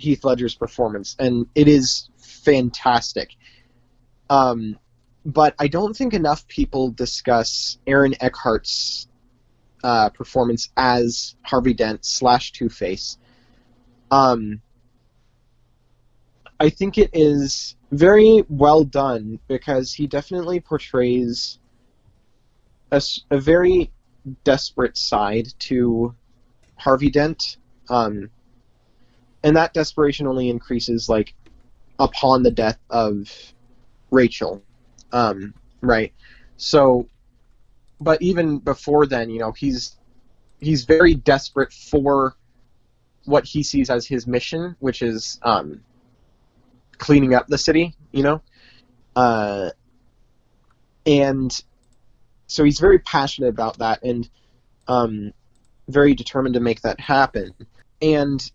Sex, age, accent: male, 20-39, American